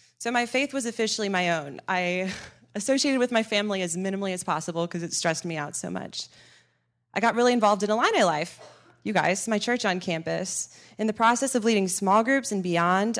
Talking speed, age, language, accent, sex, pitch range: 205 wpm, 20-39, English, American, female, 175-205 Hz